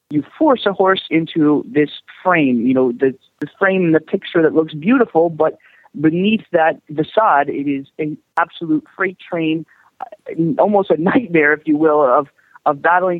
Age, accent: 40-59, American